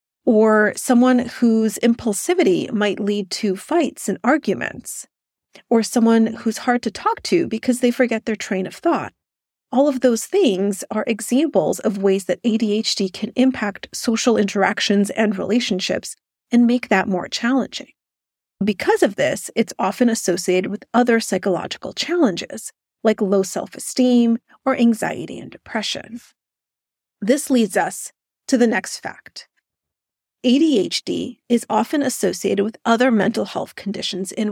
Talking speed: 135 wpm